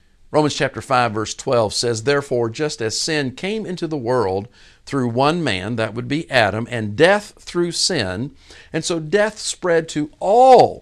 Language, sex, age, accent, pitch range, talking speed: English, male, 50-69, American, 105-155 Hz, 170 wpm